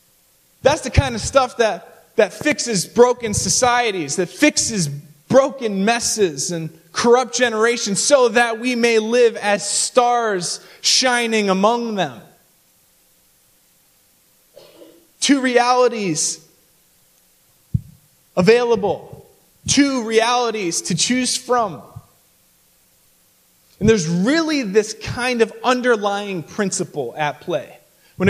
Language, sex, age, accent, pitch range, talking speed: English, male, 20-39, American, 180-240 Hz, 100 wpm